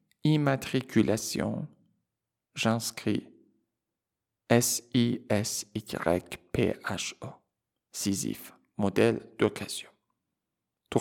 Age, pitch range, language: 50-69, 100-120 Hz, Persian